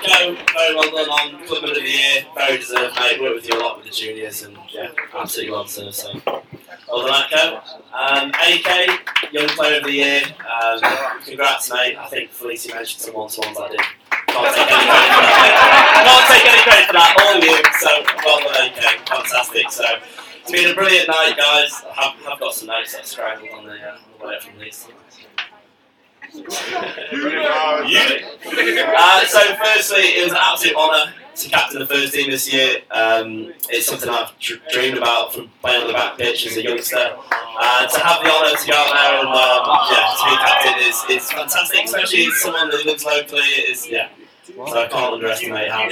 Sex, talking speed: male, 195 wpm